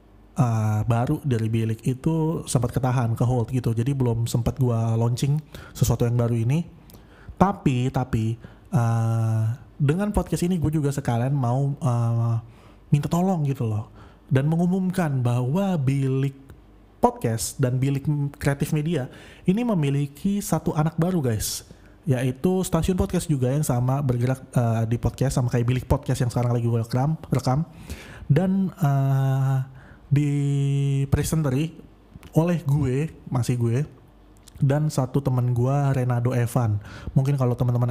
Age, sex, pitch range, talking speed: 20-39, male, 120-145 Hz, 135 wpm